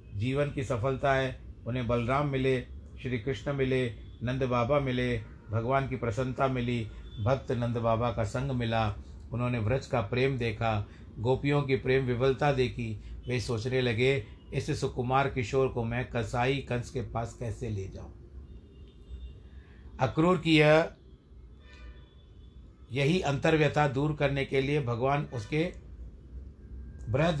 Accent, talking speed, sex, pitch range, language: native, 130 wpm, male, 105-135 Hz, Hindi